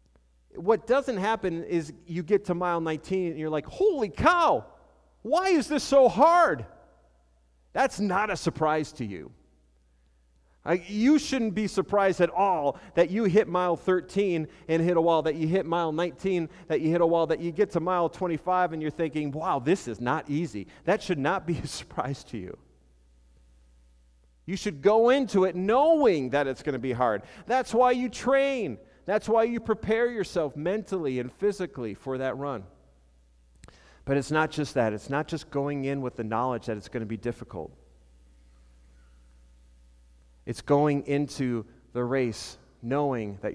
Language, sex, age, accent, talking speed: English, male, 40-59, American, 170 wpm